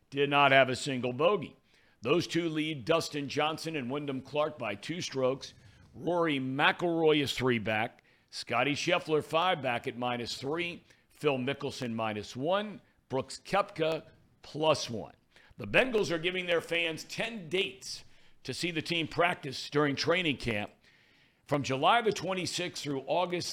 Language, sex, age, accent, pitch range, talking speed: English, male, 60-79, American, 130-170 Hz, 150 wpm